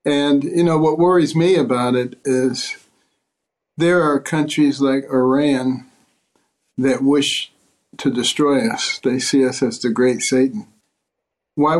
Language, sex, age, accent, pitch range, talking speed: English, male, 60-79, American, 130-155 Hz, 135 wpm